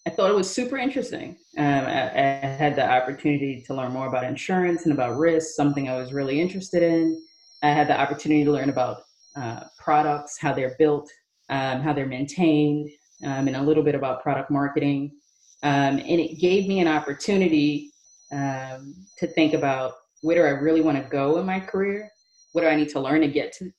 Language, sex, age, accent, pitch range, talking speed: English, female, 30-49, American, 145-185 Hz, 200 wpm